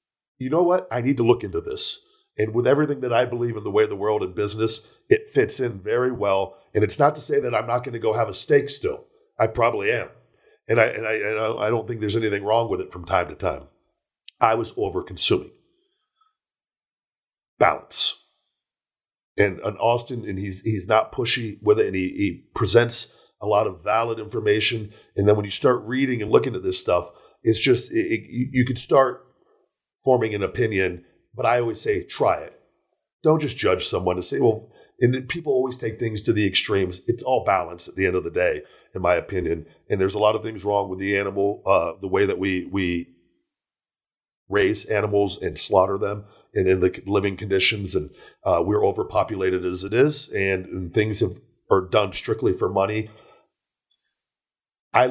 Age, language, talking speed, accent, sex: 50-69, English, 200 wpm, American, male